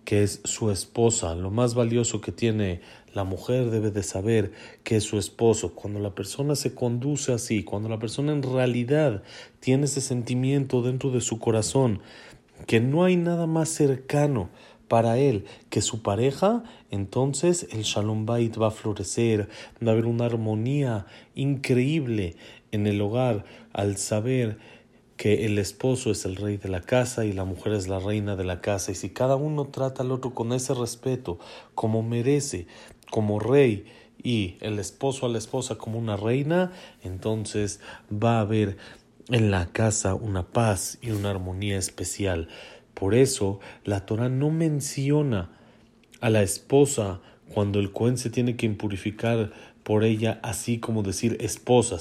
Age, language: 40-59, Spanish